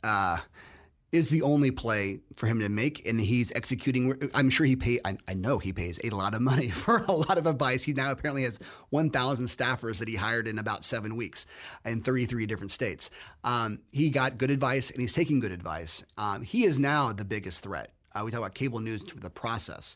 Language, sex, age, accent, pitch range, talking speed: English, male, 30-49, American, 110-150 Hz, 215 wpm